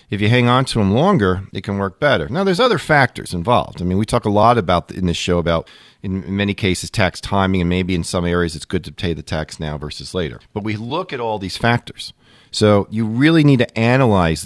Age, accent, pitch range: 40-59, American, 90-120 Hz